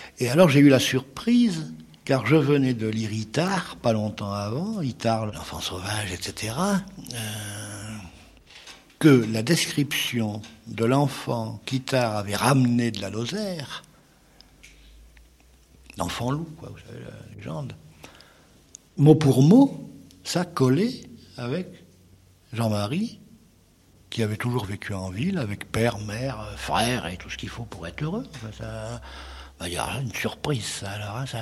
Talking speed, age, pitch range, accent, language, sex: 140 wpm, 60-79, 95-135 Hz, French, French, male